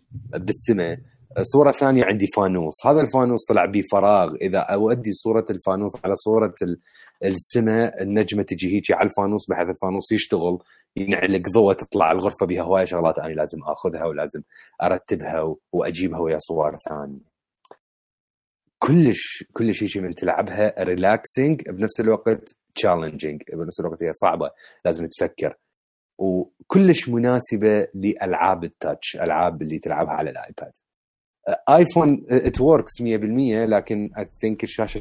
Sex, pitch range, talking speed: male, 90-115 Hz, 125 wpm